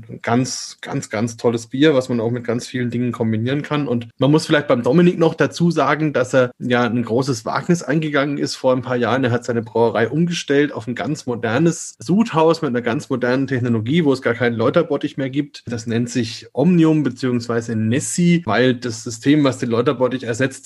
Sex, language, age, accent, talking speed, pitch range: male, German, 30-49, German, 205 wpm, 120-150 Hz